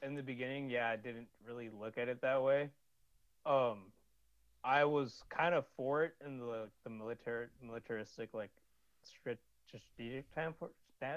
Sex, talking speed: male, 145 wpm